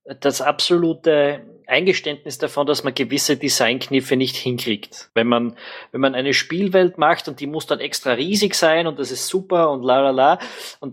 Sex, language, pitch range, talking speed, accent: male, German, 125-160 Hz, 180 wpm, Austrian